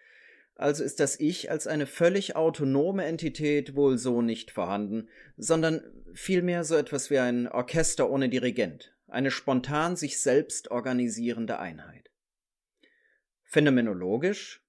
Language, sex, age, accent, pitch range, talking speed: German, male, 30-49, German, 120-155 Hz, 120 wpm